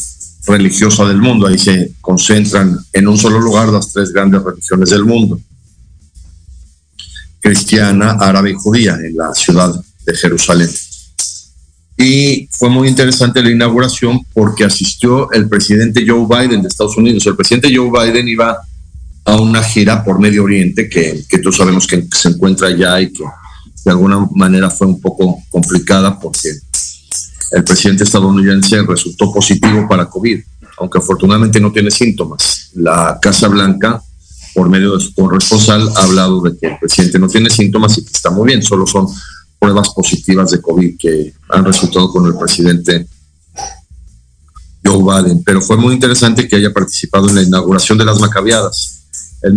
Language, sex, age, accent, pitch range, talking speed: Spanish, male, 50-69, Mexican, 90-105 Hz, 160 wpm